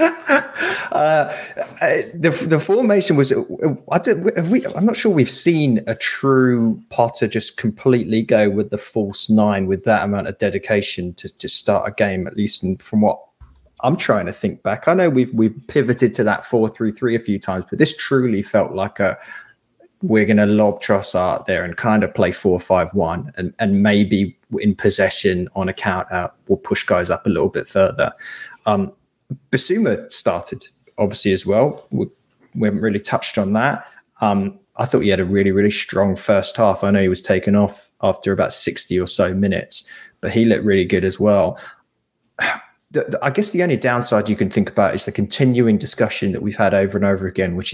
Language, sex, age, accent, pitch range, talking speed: English, male, 20-39, British, 100-130 Hz, 195 wpm